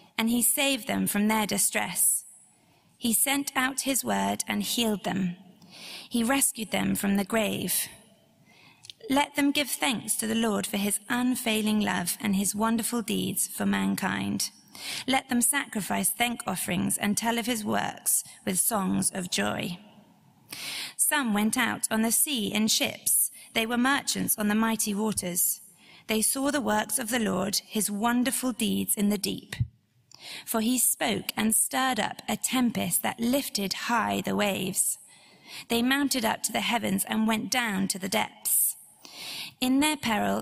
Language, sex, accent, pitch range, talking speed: English, female, British, 200-245 Hz, 160 wpm